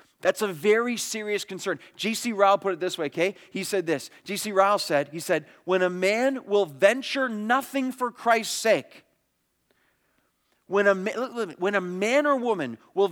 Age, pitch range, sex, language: 30-49, 180-245 Hz, male, English